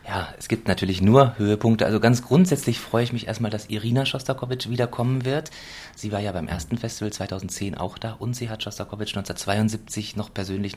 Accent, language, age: German, German, 30-49